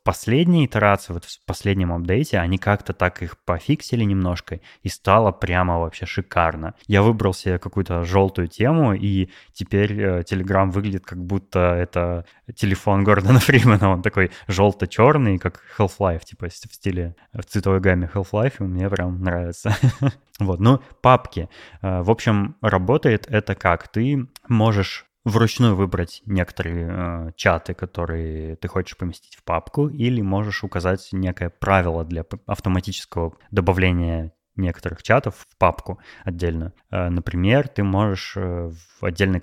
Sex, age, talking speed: male, 20-39, 135 wpm